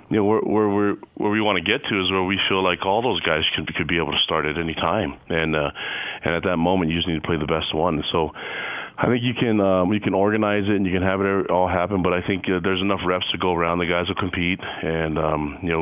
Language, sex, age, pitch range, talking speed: English, male, 30-49, 80-95 Hz, 285 wpm